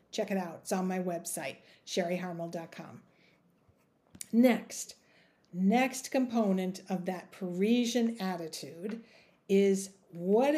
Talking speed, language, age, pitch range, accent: 95 wpm, English, 50-69, 185-255 Hz, American